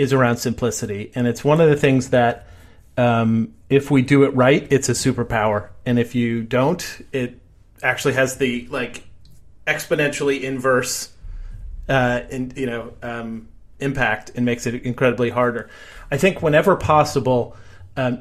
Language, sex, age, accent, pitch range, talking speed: English, male, 30-49, American, 115-140 Hz, 155 wpm